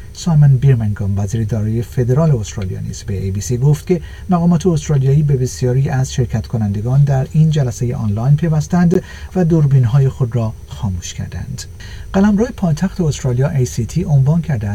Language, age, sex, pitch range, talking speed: Persian, 50-69, male, 115-155 Hz, 140 wpm